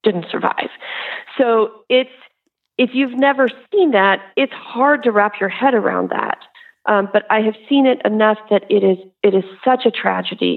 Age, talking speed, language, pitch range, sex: 40-59, 180 wpm, English, 200-255 Hz, female